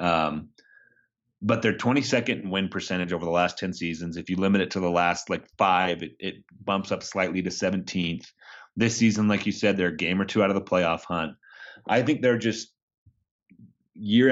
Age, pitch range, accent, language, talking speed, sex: 30-49, 90-105 Hz, American, English, 195 wpm, male